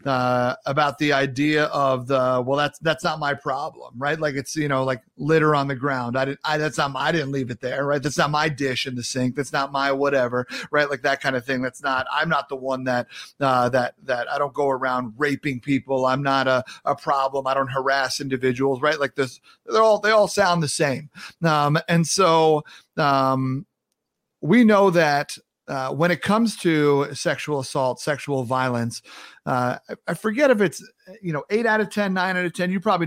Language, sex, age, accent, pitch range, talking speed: English, male, 40-59, American, 130-165 Hz, 220 wpm